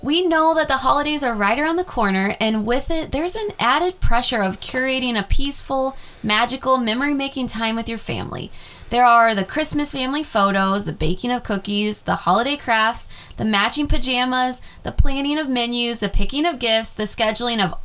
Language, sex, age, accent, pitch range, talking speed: English, female, 20-39, American, 205-270 Hz, 180 wpm